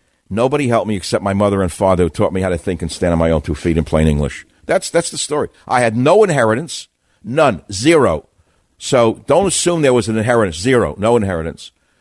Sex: male